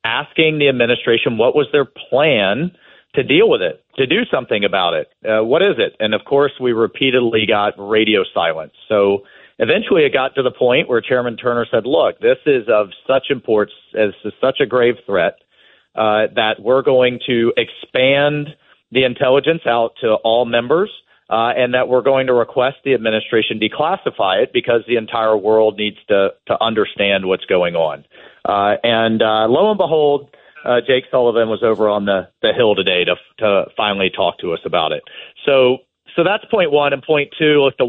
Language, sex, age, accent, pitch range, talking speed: English, male, 40-59, American, 110-135 Hz, 185 wpm